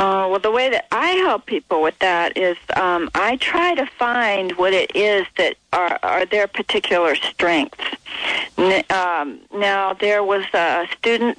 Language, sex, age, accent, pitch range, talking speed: English, female, 40-59, American, 180-230 Hz, 165 wpm